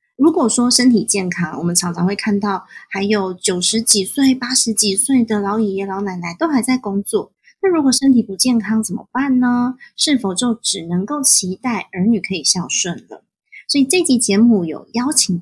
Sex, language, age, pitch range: female, Chinese, 20-39, 190-255 Hz